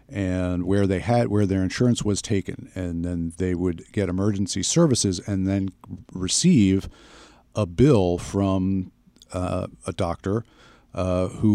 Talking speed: 140 wpm